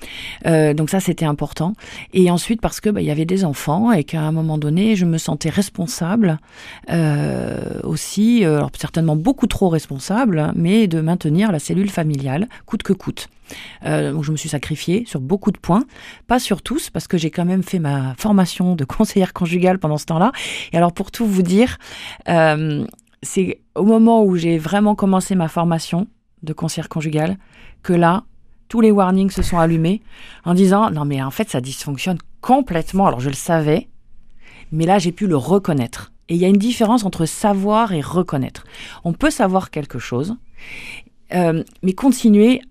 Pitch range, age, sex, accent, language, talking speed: 160-210 Hz, 40-59, female, French, French, 190 wpm